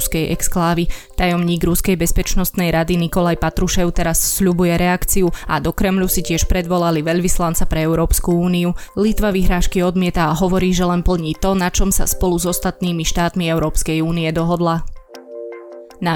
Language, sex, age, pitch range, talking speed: Slovak, female, 20-39, 170-185 Hz, 150 wpm